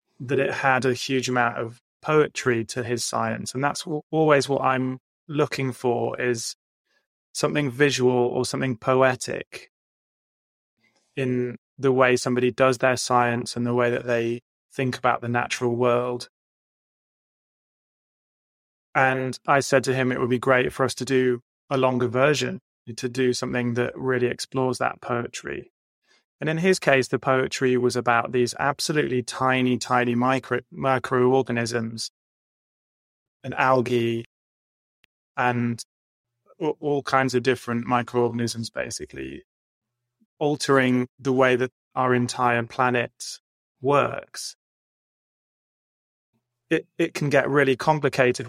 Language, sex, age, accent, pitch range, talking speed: English, male, 20-39, British, 120-130 Hz, 125 wpm